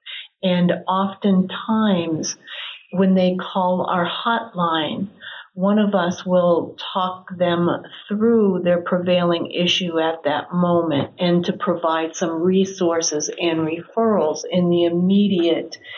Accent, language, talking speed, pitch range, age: American, English, 115 wpm, 170-200 Hz, 50-69